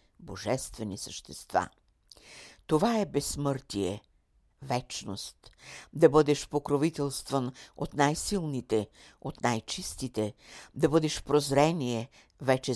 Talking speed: 80 wpm